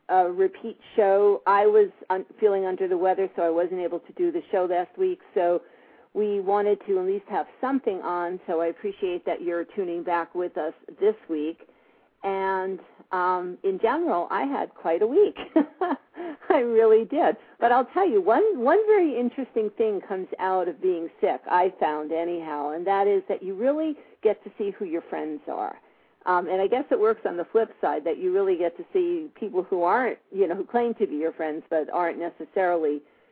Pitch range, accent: 165-230 Hz, American